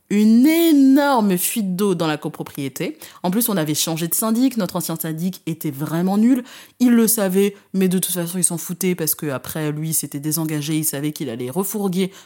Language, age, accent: French, 20-39, French